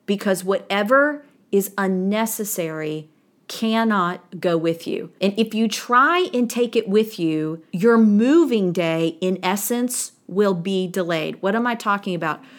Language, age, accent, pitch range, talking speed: English, 40-59, American, 175-220 Hz, 145 wpm